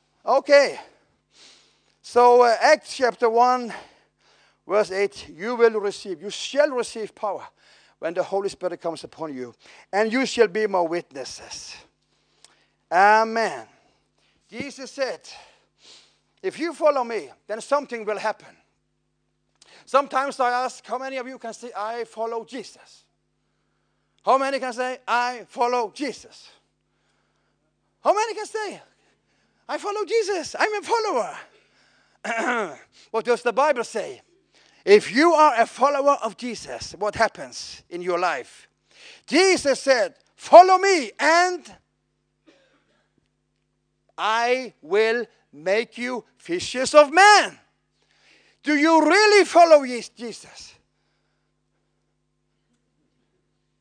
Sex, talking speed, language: male, 115 wpm, English